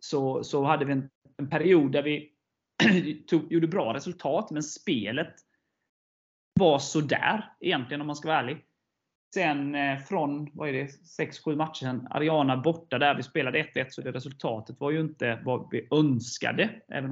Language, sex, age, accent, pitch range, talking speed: Swedish, male, 30-49, native, 125-150 Hz, 170 wpm